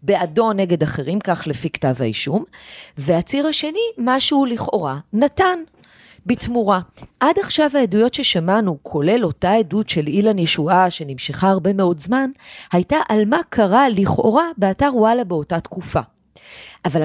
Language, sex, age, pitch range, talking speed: Hebrew, female, 40-59, 170-240 Hz, 130 wpm